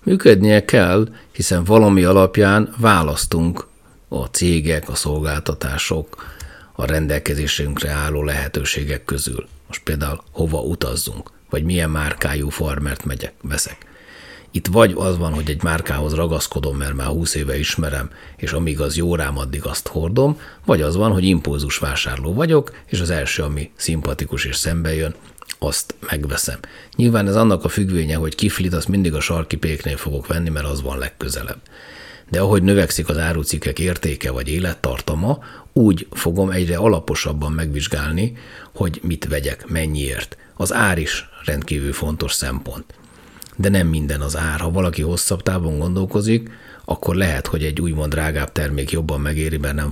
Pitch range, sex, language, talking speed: 75-90 Hz, male, Hungarian, 150 wpm